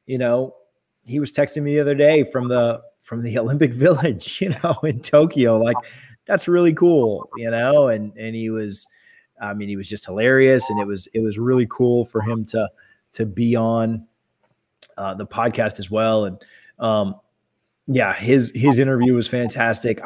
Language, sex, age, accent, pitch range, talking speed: English, male, 20-39, American, 110-125 Hz, 180 wpm